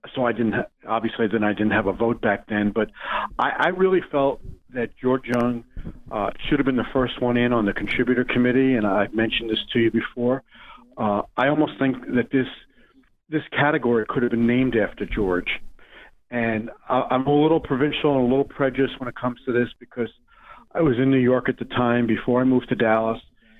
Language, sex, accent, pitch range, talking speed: English, male, American, 115-130 Hz, 210 wpm